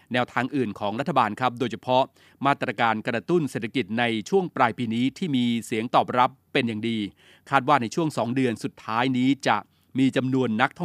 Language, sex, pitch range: Thai, male, 115-140 Hz